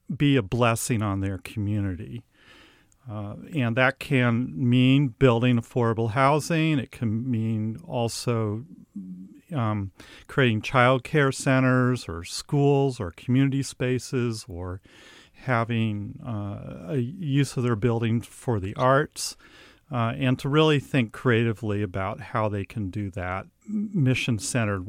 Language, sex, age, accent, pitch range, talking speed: English, male, 40-59, American, 105-130 Hz, 125 wpm